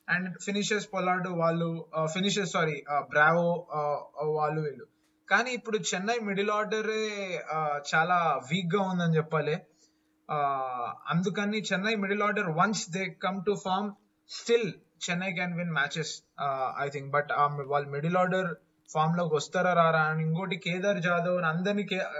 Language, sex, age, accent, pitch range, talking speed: Telugu, male, 20-39, native, 165-210 Hz, 135 wpm